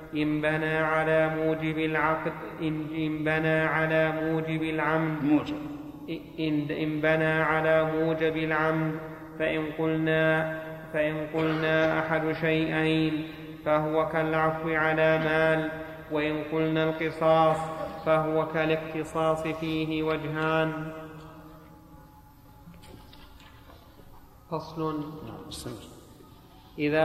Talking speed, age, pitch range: 80 wpm, 30-49, 155-160 Hz